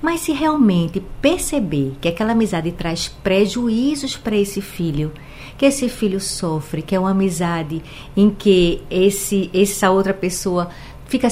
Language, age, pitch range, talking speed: Portuguese, 50-69, 170-235 Hz, 140 wpm